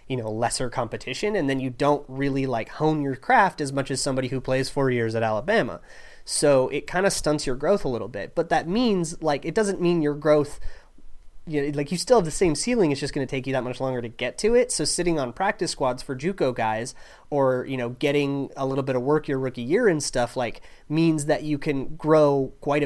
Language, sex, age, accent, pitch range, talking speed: English, male, 30-49, American, 125-155 Hz, 240 wpm